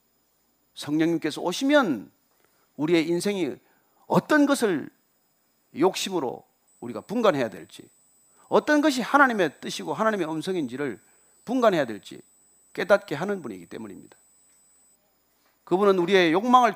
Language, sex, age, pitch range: Korean, male, 40-59, 160-240 Hz